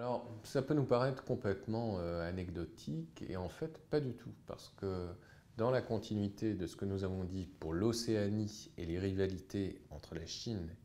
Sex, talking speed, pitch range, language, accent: male, 185 wpm, 90-125 Hz, French, French